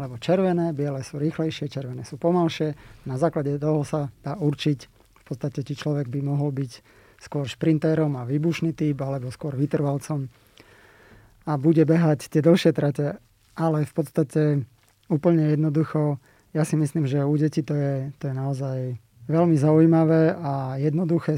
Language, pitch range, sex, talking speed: Slovak, 135-155 Hz, male, 150 wpm